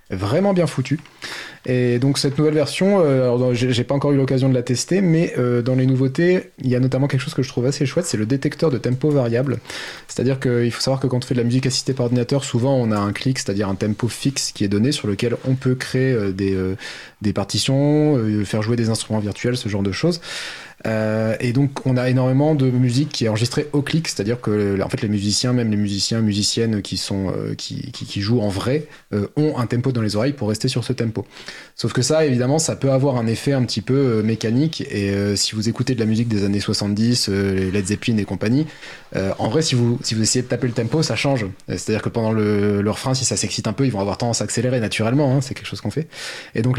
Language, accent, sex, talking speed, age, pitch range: French, French, male, 260 wpm, 20-39, 110-140 Hz